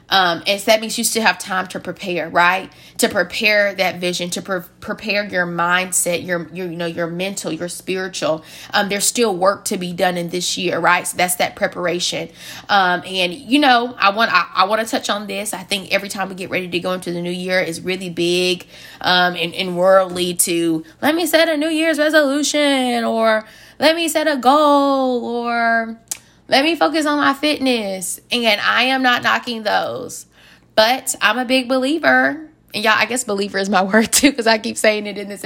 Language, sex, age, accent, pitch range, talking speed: English, female, 20-39, American, 180-235 Hz, 210 wpm